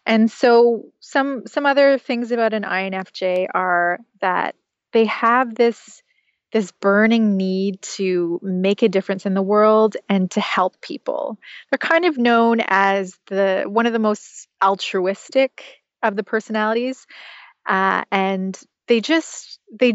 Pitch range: 195-245 Hz